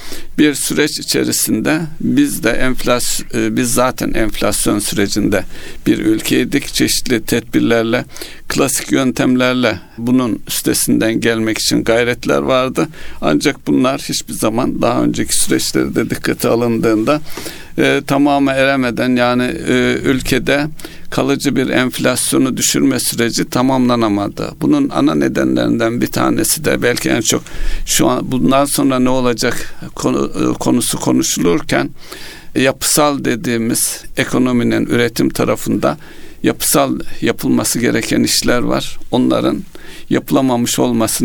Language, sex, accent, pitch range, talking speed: Turkish, male, native, 115-135 Hz, 105 wpm